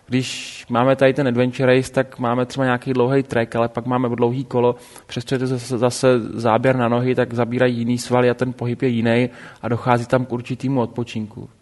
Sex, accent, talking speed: male, native, 195 wpm